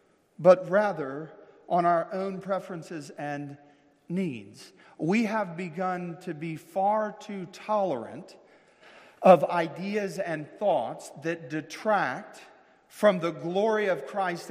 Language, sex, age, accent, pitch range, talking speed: English, male, 40-59, American, 155-195 Hz, 110 wpm